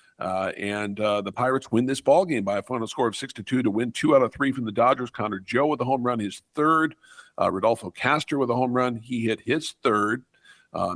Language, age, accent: English, 50-69, American